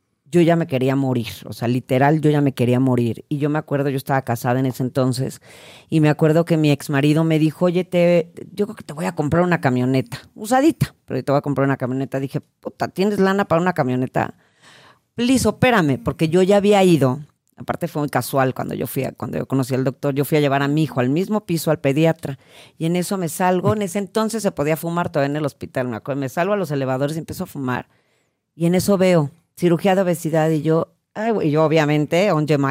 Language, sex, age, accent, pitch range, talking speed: Spanish, female, 40-59, Mexican, 135-175 Hz, 230 wpm